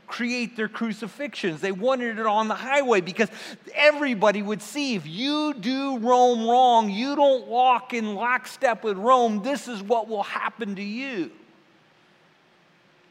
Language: English